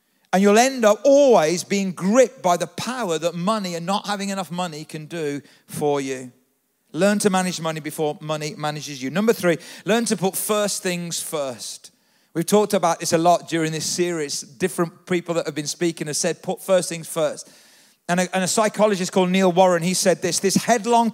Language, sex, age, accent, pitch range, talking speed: English, male, 40-59, British, 165-205 Hz, 200 wpm